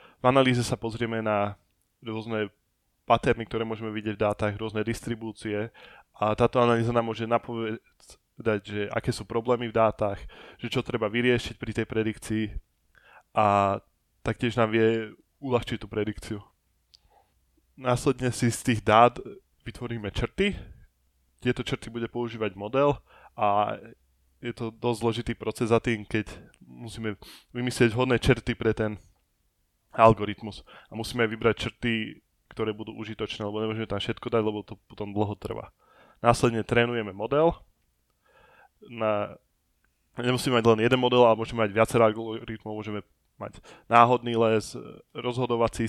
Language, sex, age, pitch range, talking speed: Slovak, male, 20-39, 105-120 Hz, 135 wpm